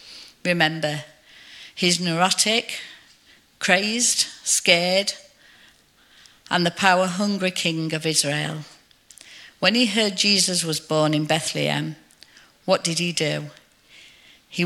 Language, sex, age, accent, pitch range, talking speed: English, female, 50-69, British, 155-190 Hz, 100 wpm